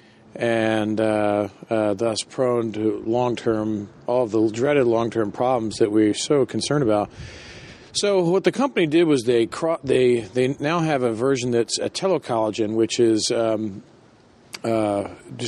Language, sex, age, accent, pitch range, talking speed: English, male, 40-59, American, 110-125 Hz, 150 wpm